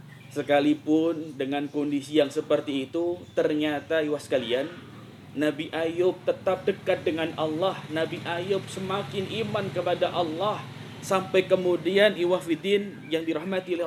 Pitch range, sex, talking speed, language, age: 165-210 Hz, male, 120 wpm, Indonesian, 30-49